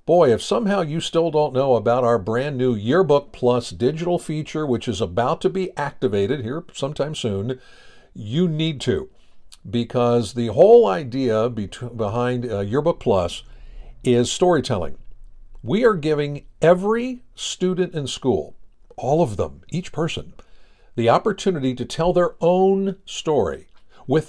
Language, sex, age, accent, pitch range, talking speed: English, male, 60-79, American, 115-170 Hz, 140 wpm